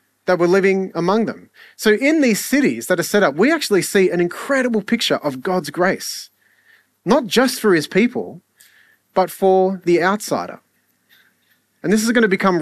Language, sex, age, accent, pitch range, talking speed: English, male, 30-49, Australian, 140-200 Hz, 175 wpm